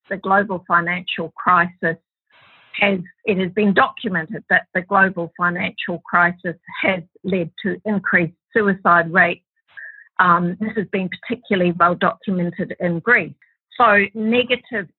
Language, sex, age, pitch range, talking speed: English, female, 50-69, 175-215 Hz, 125 wpm